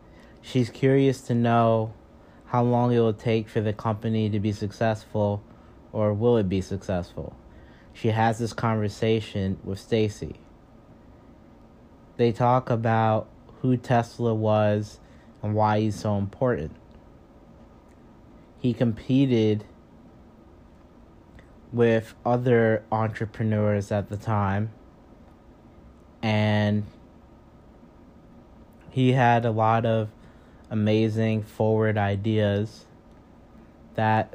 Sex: male